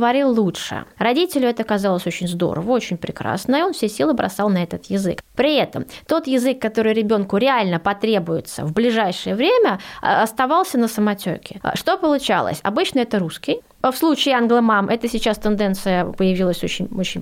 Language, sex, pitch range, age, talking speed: Russian, female, 195-260 Hz, 20-39, 155 wpm